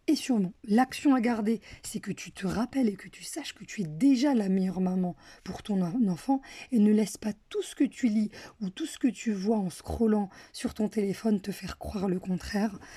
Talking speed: 225 wpm